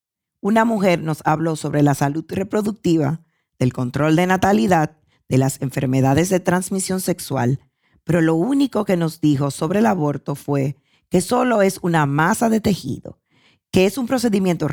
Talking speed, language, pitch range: 160 wpm, Spanish, 145-190 Hz